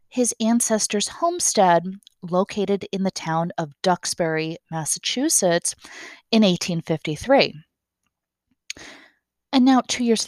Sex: female